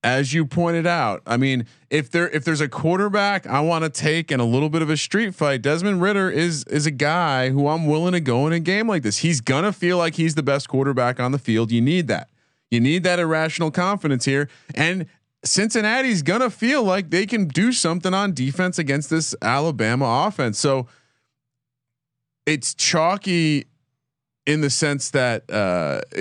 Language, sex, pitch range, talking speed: English, male, 120-165 Hz, 195 wpm